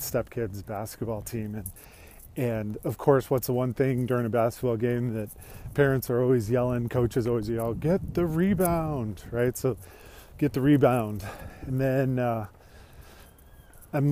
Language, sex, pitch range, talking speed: English, male, 110-135 Hz, 150 wpm